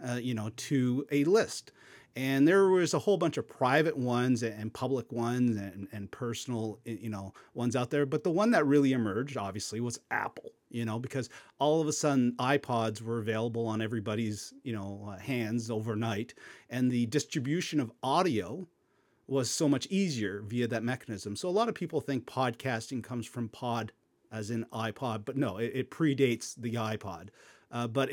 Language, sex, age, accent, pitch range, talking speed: English, male, 40-59, American, 115-145 Hz, 185 wpm